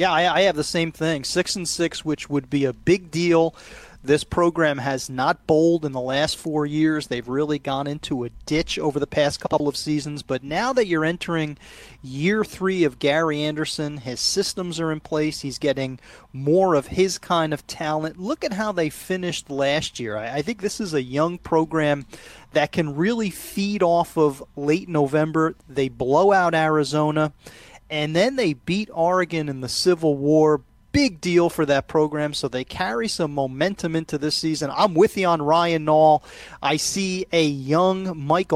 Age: 30-49